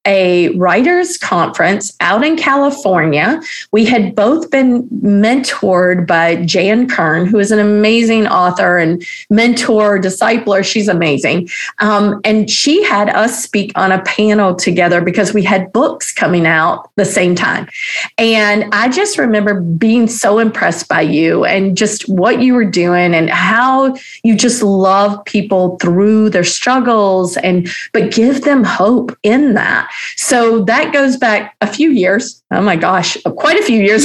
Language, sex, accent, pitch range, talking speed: English, female, American, 185-255 Hz, 155 wpm